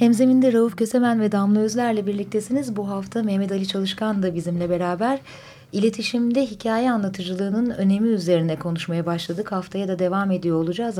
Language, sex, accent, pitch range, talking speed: Turkish, female, native, 175-225 Hz, 145 wpm